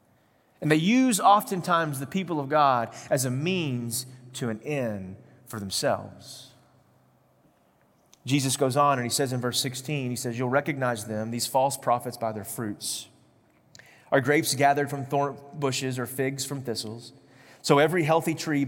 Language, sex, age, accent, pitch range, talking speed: English, male, 30-49, American, 135-190 Hz, 160 wpm